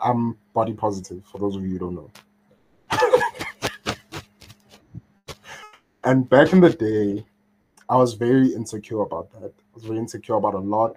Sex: male